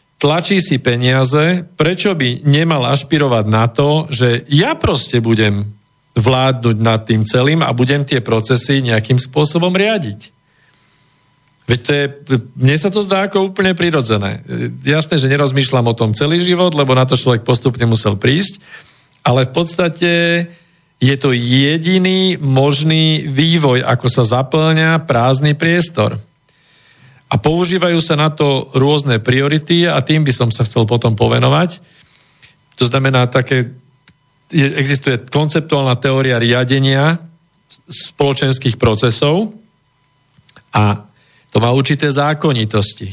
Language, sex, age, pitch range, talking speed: Slovak, male, 40-59, 125-155 Hz, 125 wpm